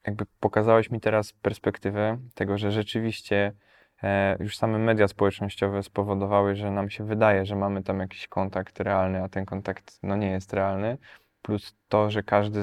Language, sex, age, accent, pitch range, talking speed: Polish, male, 20-39, native, 100-110 Hz, 165 wpm